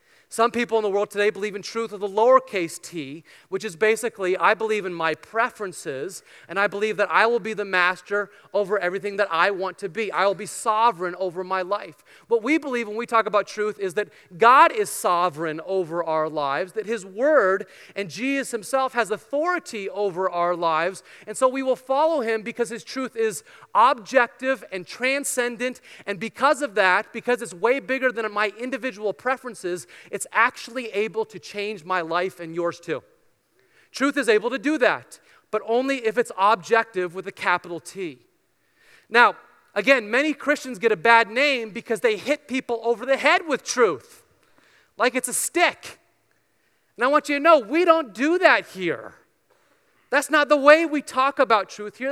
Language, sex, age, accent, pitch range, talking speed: English, male, 30-49, American, 200-265 Hz, 190 wpm